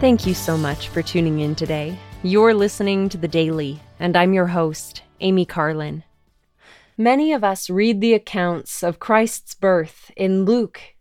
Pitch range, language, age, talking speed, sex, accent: 170-220 Hz, English, 20-39, 165 wpm, female, American